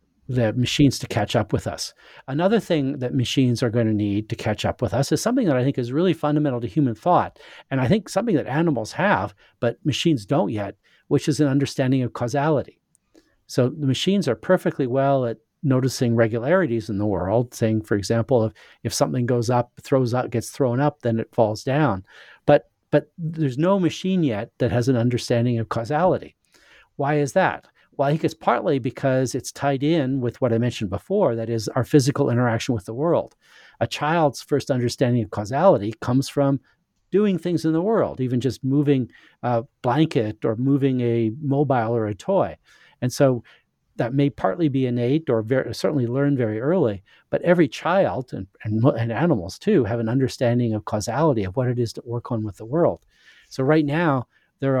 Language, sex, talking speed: English, male, 195 wpm